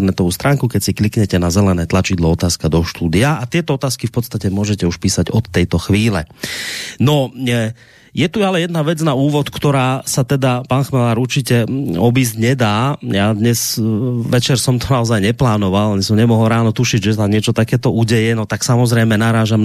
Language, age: Slovak, 30-49